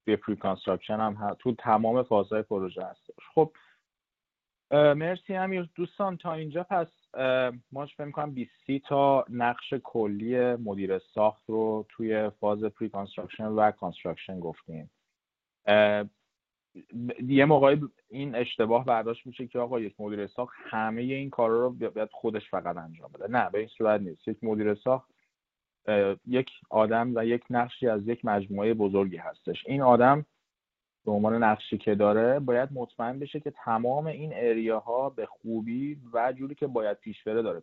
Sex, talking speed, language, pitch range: male, 150 wpm, Persian, 105-125 Hz